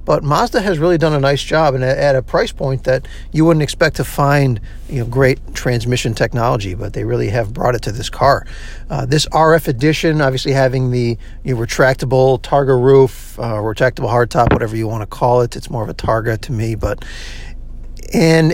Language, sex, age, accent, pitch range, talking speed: English, male, 50-69, American, 125-155 Hz, 190 wpm